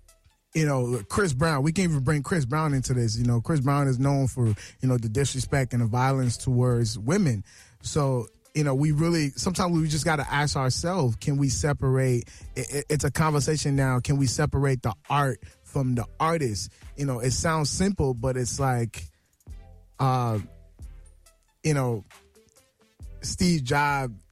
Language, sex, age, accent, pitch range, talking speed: English, male, 20-39, American, 120-150 Hz, 170 wpm